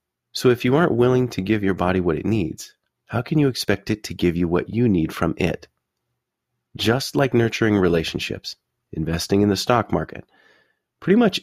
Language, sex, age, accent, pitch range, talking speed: English, male, 30-49, American, 85-115 Hz, 190 wpm